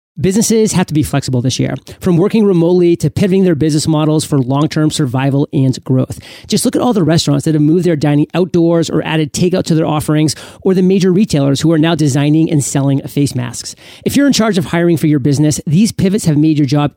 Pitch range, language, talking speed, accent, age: 145-180 Hz, English, 230 wpm, American, 30-49